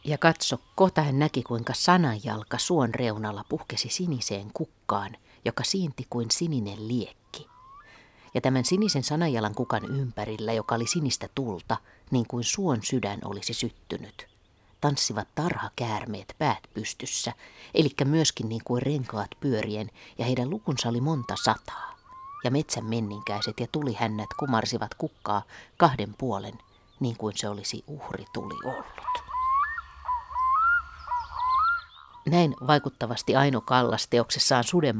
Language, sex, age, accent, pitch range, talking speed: Finnish, female, 30-49, native, 110-150 Hz, 120 wpm